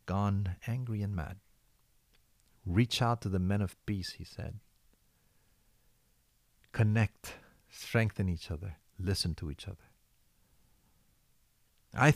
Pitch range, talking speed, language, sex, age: 90-115 Hz, 105 wpm, English, male, 50-69